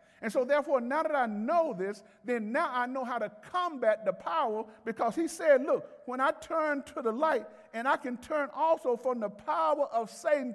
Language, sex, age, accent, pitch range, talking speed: English, male, 50-69, American, 225-320 Hz, 210 wpm